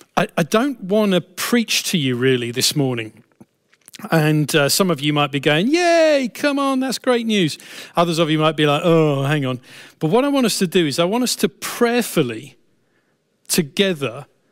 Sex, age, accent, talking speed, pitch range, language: male, 40-59, British, 195 wpm, 150-215 Hz, English